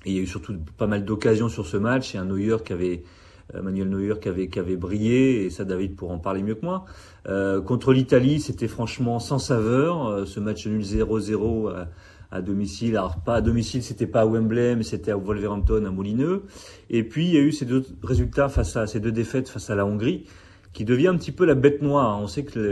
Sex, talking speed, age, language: male, 245 wpm, 30-49, English